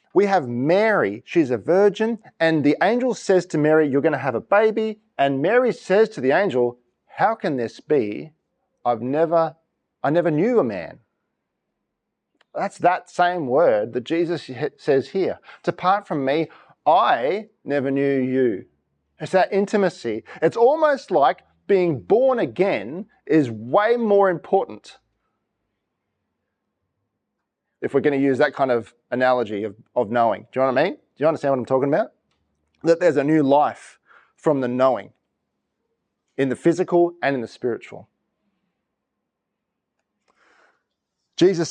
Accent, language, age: Australian, English, 40-59